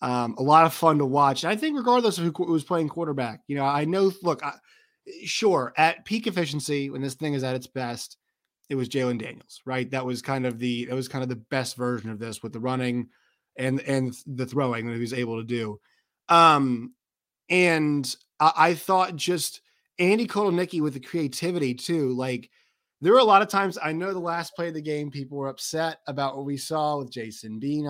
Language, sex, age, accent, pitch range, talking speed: English, male, 20-39, American, 125-175 Hz, 215 wpm